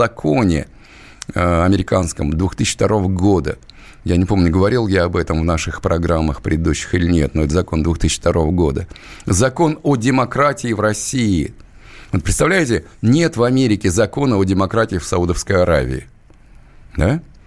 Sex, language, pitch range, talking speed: male, Russian, 85-110 Hz, 135 wpm